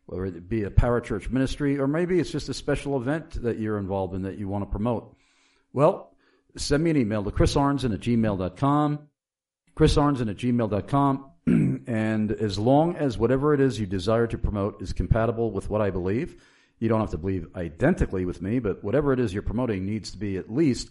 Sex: male